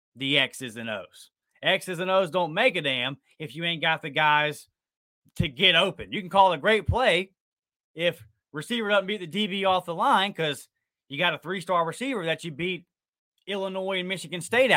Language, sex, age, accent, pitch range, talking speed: English, male, 30-49, American, 135-180 Hz, 200 wpm